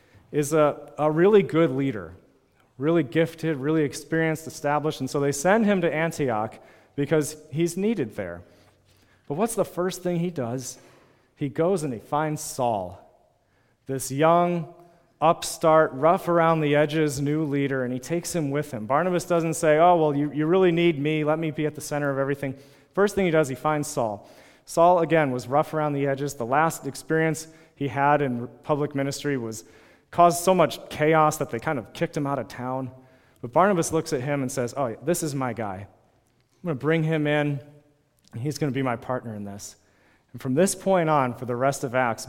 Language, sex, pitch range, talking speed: English, male, 125-155 Hz, 190 wpm